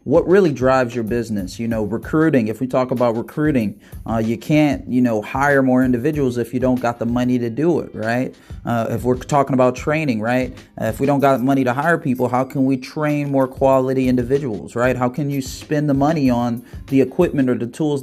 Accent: American